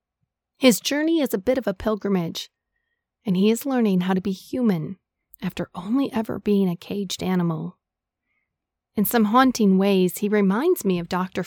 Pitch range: 180-225 Hz